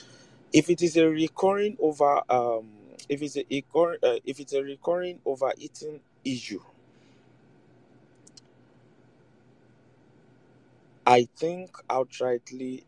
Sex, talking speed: male, 90 wpm